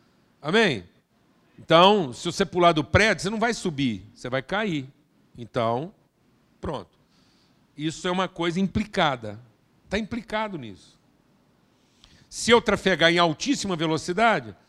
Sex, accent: male, Brazilian